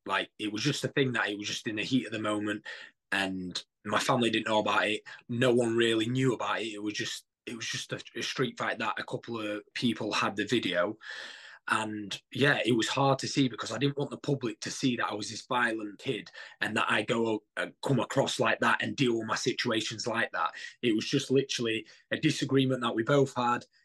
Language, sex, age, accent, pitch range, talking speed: English, male, 20-39, British, 110-135 Hz, 235 wpm